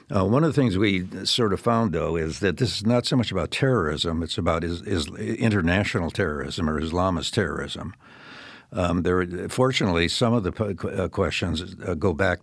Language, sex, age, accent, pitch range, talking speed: English, male, 60-79, American, 80-100 Hz, 180 wpm